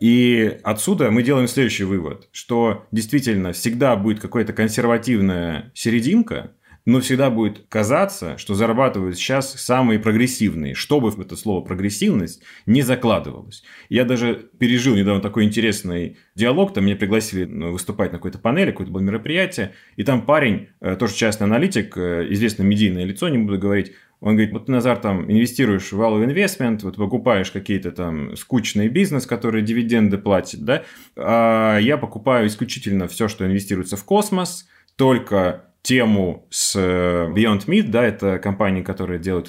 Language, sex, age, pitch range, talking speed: Russian, male, 30-49, 95-125 Hz, 145 wpm